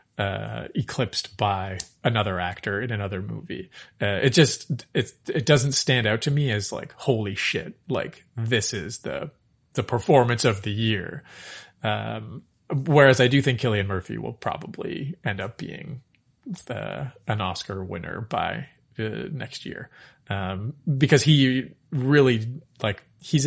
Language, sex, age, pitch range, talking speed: English, male, 30-49, 105-140 Hz, 145 wpm